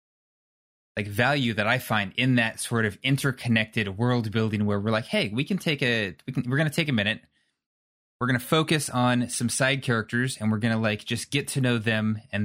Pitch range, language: 105-130 Hz, English